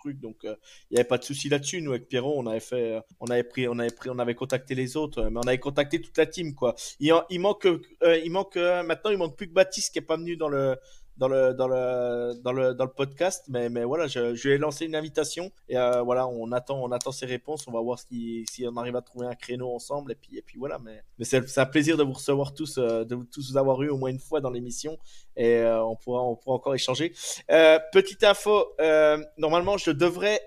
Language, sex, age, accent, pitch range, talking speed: French, male, 20-39, French, 125-160 Hz, 270 wpm